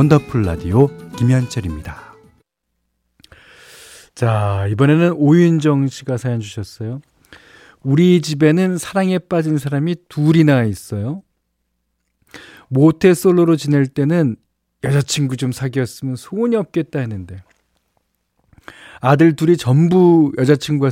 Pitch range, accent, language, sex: 110-160 Hz, native, Korean, male